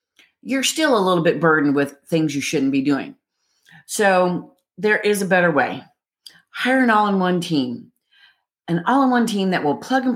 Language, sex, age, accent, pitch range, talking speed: English, female, 40-59, American, 145-195 Hz, 170 wpm